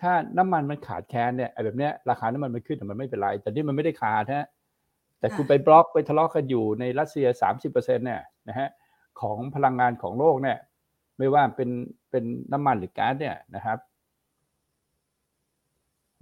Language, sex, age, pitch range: Thai, male, 60-79, 110-150 Hz